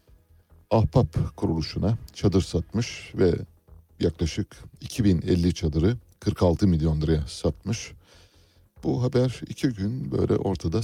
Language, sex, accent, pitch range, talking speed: Turkish, male, native, 80-105 Hz, 100 wpm